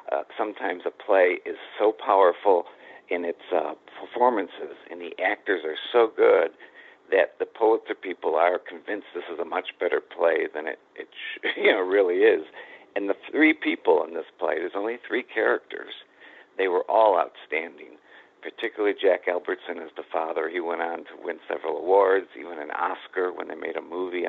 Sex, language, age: male, English, 50-69